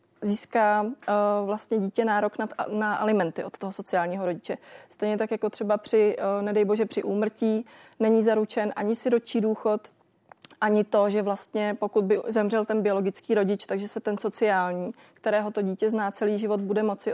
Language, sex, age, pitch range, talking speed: Czech, female, 20-39, 205-225 Hz, 175 wpm